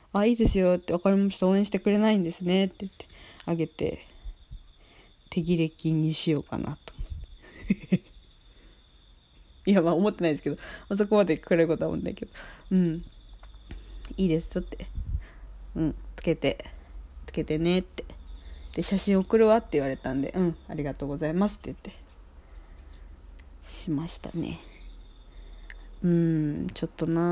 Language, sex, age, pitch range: Japanese, female, 20-39, 155-190 Hz